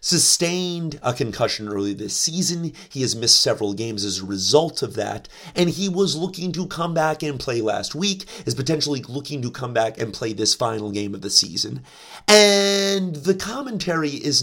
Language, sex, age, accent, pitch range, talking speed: English, male, 30-49, American, 145-215 Hz, 185 wpm